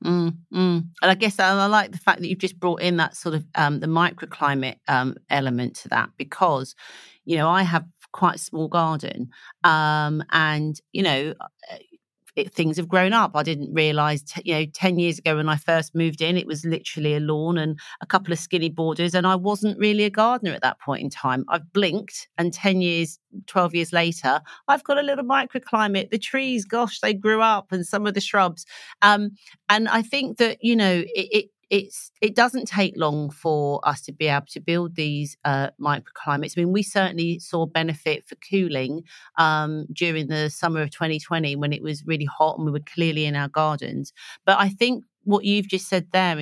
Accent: British